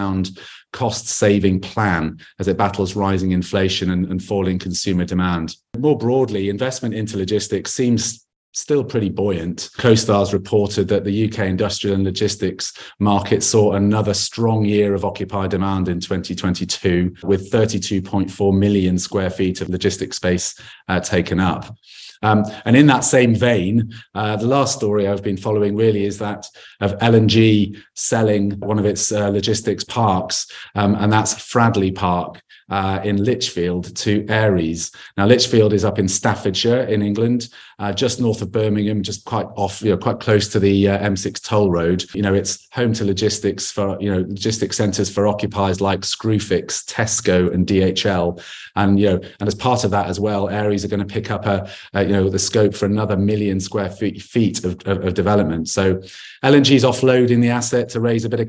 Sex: male